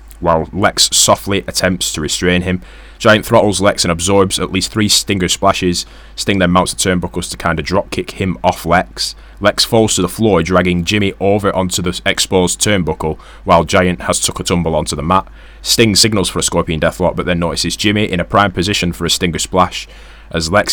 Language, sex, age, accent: English, male, 20-39, British